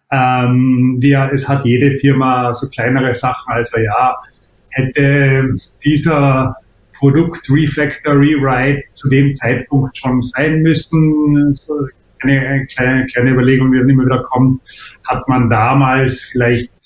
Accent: German